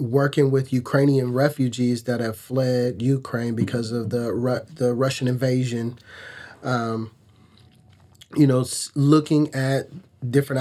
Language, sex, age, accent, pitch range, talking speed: English, male, 30-49, American, 120-135 Hz, 120 wpm